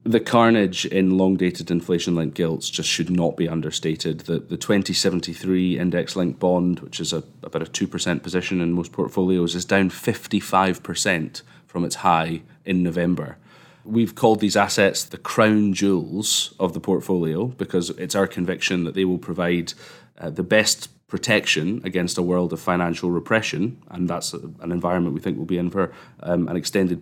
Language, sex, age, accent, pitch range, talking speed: English, male, 30-49, British, 90-100 Hz, 165 wpm